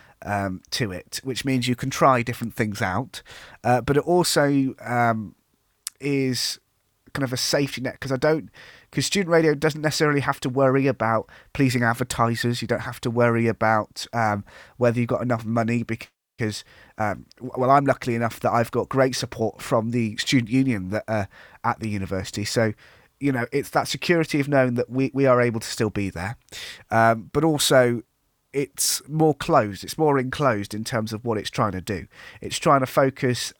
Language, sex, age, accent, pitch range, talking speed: English, male, 30-49, British, 110-135 Hz, 190 wpm